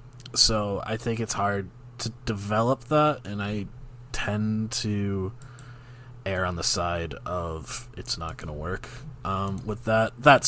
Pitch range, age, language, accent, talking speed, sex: 95-120 Hz, 20-39, English, American, 150 wpm, male